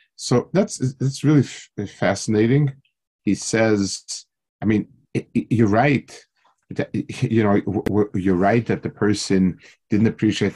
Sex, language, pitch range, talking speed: male, English, 100-125 Hz, 150 wpm